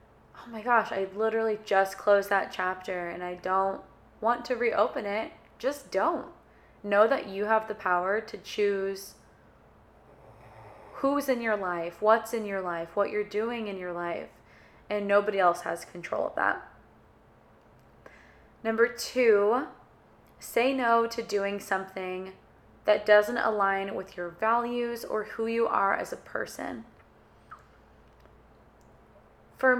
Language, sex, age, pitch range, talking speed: English, female, 20-39, 190-230 Hz, 135 wpm